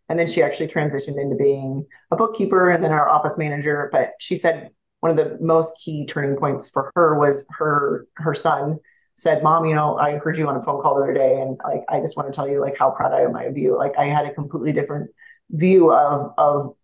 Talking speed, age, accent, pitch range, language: 245 wpm, 30-49, American, 145-165 Hz, English